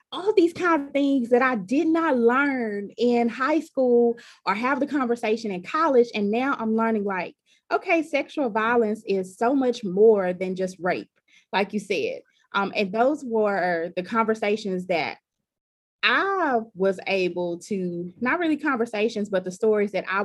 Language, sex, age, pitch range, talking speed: English, female, 20-39, 185-240 Hz, 165 wpm